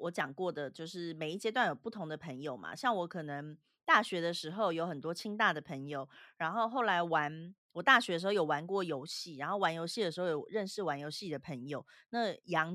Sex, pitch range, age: female, 155-210 Hz, 30-49